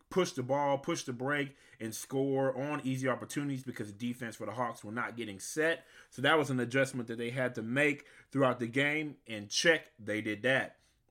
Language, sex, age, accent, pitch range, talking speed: English, male, 30-49, American, 110-135 Hz, 210 wpm